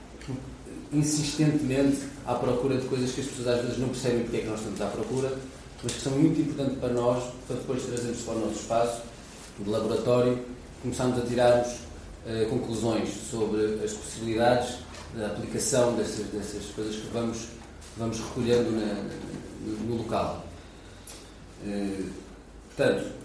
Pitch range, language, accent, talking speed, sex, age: 105-130 Hz, Portuguese, Portuguese, 150 wpm, male, 40-59